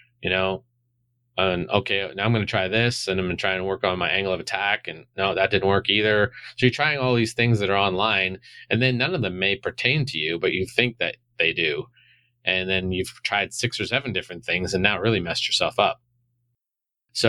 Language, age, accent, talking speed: English, 30-49, American, 235 wpm